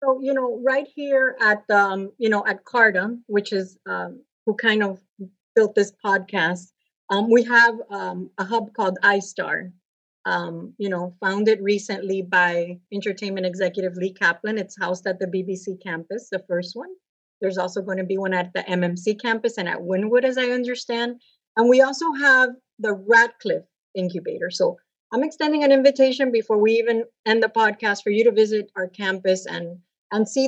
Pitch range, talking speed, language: 195-240 Hz, 175 wpm, English